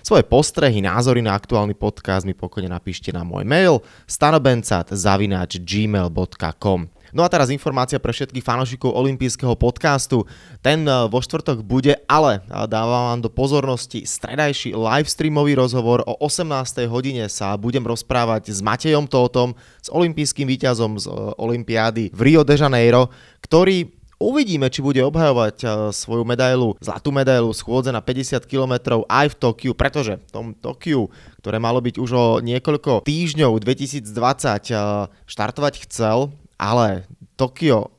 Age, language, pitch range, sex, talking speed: 20-39, Slovak, 110-135 Hz, male, 135 wpm